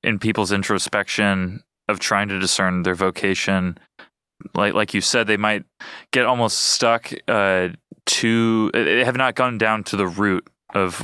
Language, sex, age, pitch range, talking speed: English, male, 20-39, 95-105 Hz, 160 wpm